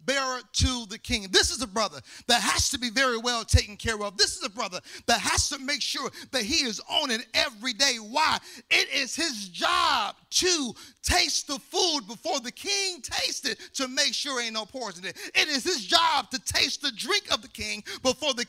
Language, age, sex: English, 40-59, male